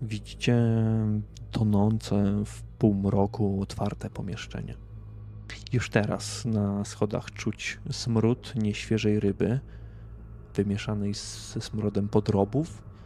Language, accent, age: Polish, native, 20-39